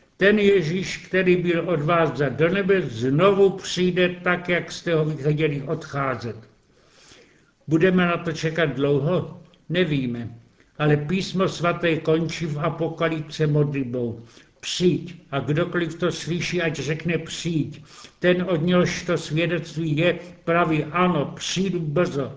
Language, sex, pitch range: Czech, male, 150-180 Hz